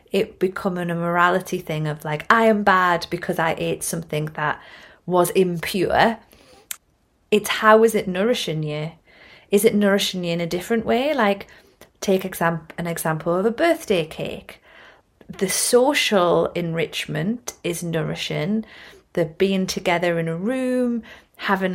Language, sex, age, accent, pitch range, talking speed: English, female, 30-49, British, 170-215 Hz, 140 wpm